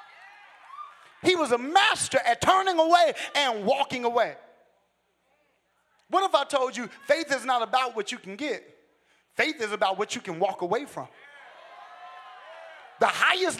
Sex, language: male, English